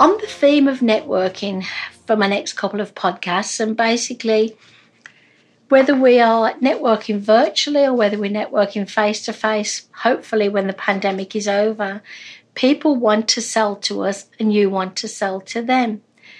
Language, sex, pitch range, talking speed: English, female, 210-260 Hz, 160 wpm